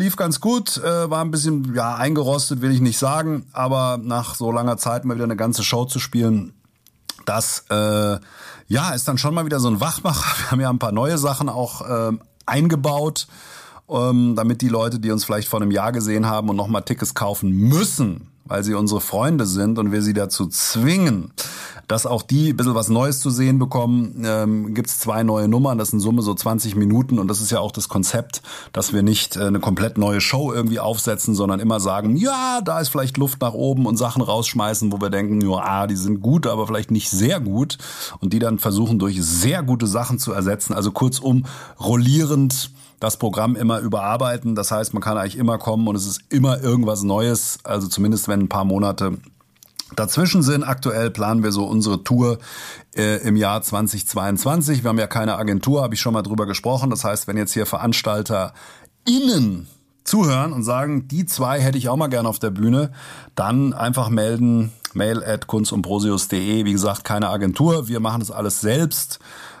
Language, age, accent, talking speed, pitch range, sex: German, 40-59, German, 195 wpm, 105-130 Hz, male